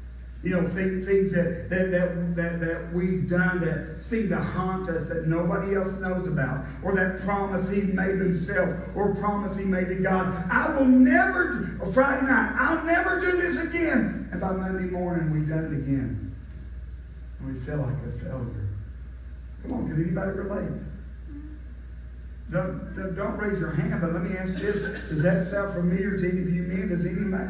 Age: 50-69